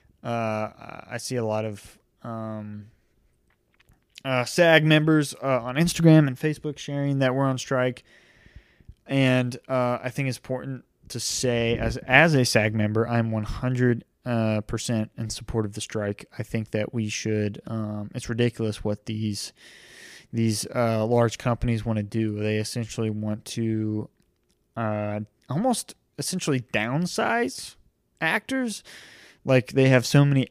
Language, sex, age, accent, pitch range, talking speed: English, male, 20-39, American, 110-135 Hz, 145 wpm